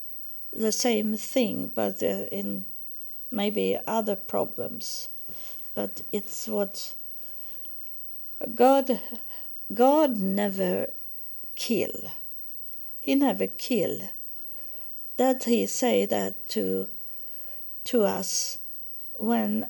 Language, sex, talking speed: English, female, 80 wpm